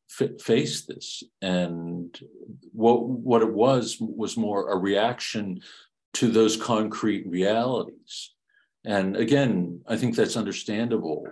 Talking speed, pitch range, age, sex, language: 110 wpm, 85-110 Hz, 50-69, male, English